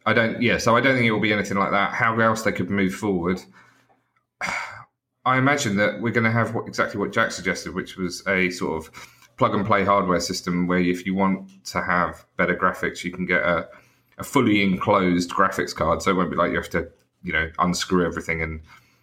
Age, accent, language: 30-49, British, English